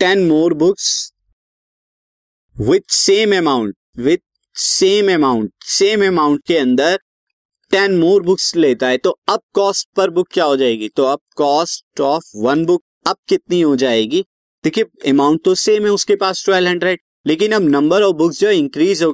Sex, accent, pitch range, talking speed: male, native, 145-200 Hz, 165 wpm